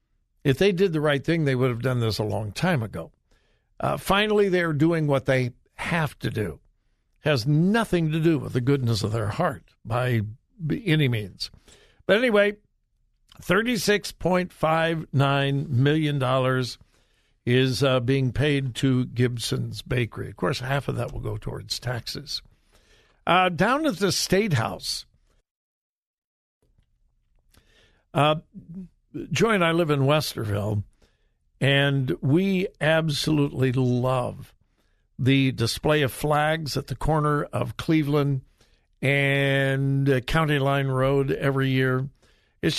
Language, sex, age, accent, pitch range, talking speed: English, male, 60-79, American, 130-160 Hz, 130 wpm